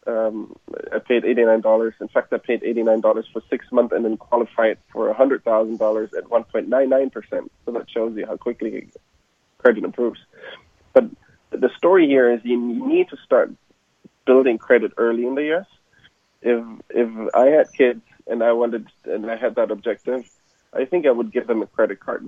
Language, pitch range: English, 115-135 Hz